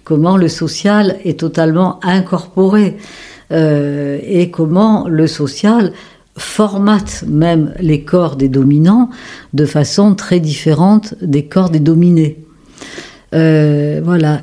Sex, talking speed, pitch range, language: female, 110 wpm, 145-165 Hz, French